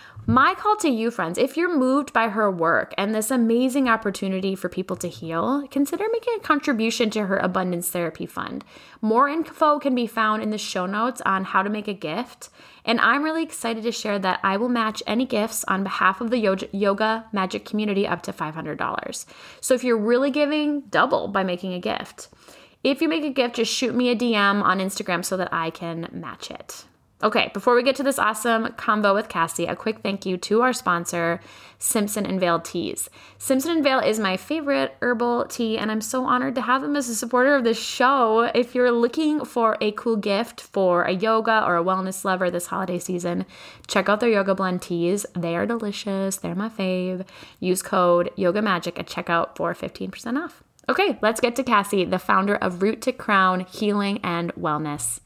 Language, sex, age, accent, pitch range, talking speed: English, female, 10-29, American, 185-245 Hz, 200 wpm